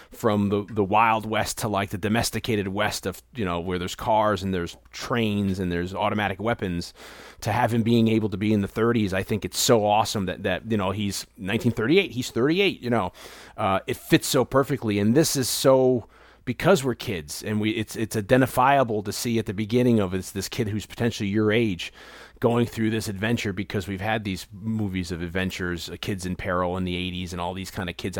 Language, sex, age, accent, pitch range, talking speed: English, male, 30-49, American, 95-130 Hz, 215 wpm